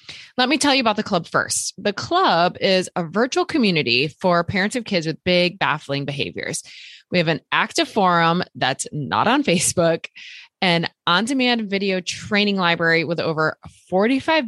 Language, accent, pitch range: English, American, 155-205 Hz